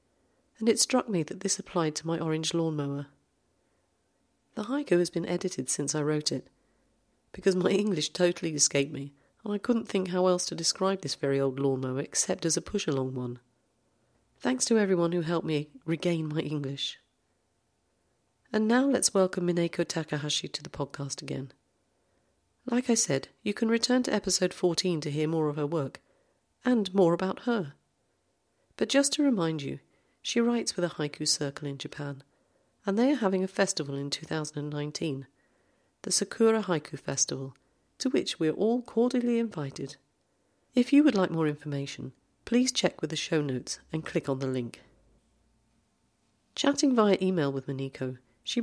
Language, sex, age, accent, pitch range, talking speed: English, female, 40-59, British, 140-200 Hz, 170 wpm